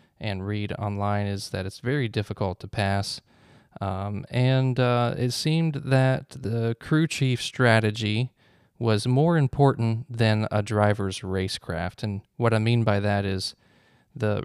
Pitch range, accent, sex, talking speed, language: 100-125 Hz, American, male, 145 wpm, English